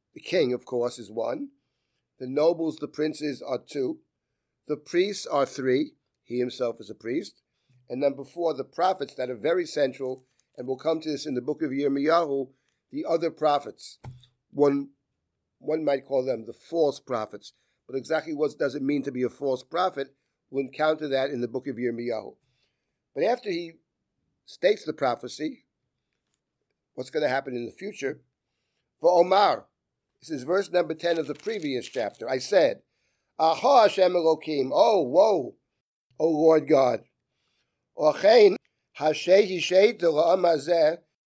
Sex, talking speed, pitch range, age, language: male, 145 wpm, 135-180 Hz, 50-69, English